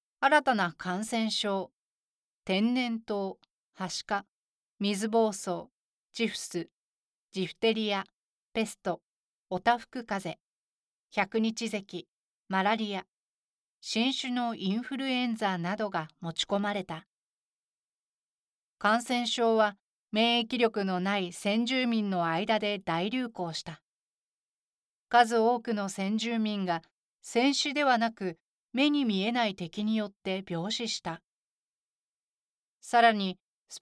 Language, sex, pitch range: Japanese, female, 190-235 Hz